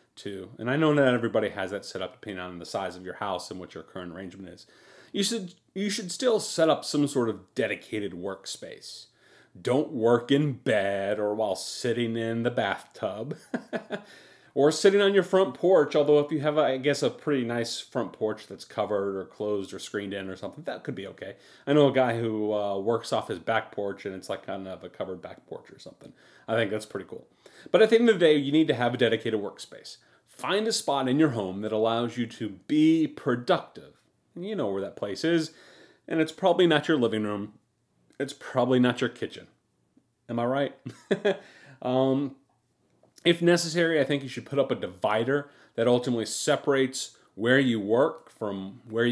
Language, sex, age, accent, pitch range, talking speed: English, male, 30-49, American, 110-145 Hz, 205 wpm